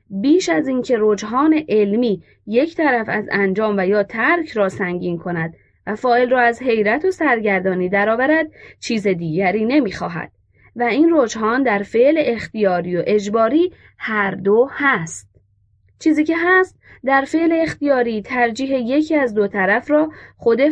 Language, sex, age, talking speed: Persian, female, 20-39, 150 wpm